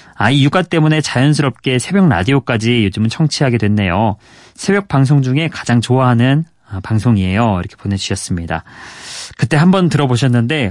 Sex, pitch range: male, 105-140 Hz